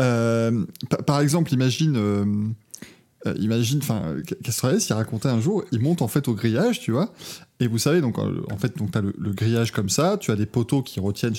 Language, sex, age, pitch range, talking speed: French, male, 20-39, 120-165 Hz, 200 wpm